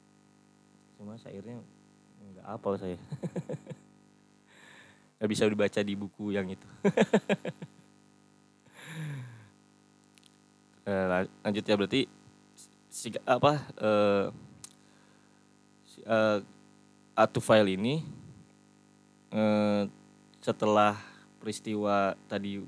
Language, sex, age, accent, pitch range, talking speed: Indonesian, male, 20-39, native, 100-110 Hz, 70 wpm